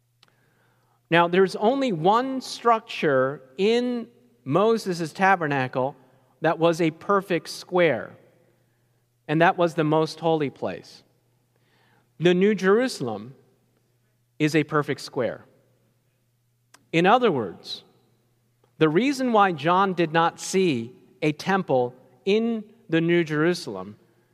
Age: 40-59